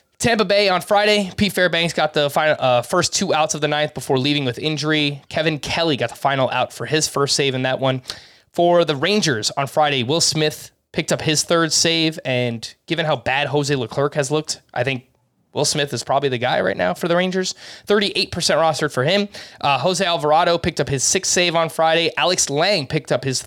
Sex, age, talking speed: male, 20-39, 215 wpm